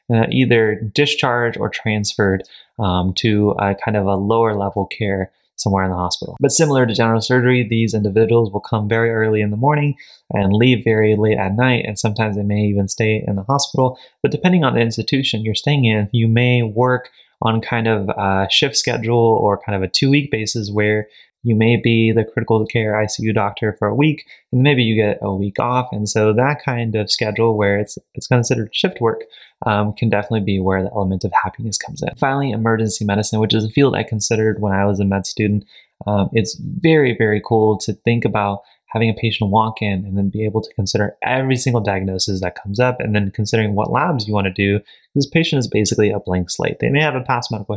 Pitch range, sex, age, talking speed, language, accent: 105-120 Hz, male, 20-39, 220 wpm, English, American